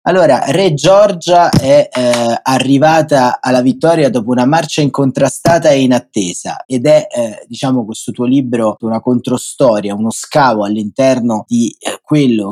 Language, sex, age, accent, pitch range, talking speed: Italian, male, 30-49, native, 110-135 Hz, 140 wpm